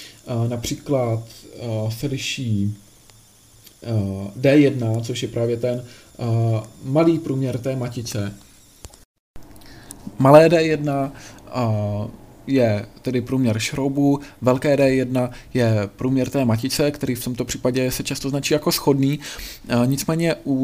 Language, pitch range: Czech, 120-145 Hz